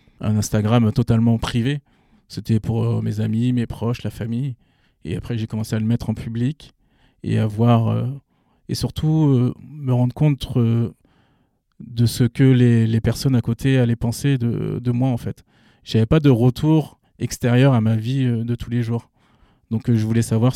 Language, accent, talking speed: French, French, 195 wpm